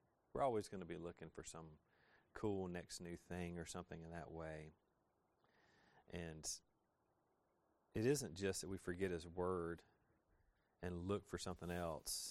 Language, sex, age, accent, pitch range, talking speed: English, male, 30-49, American, 85-100 Hz, 150 wpm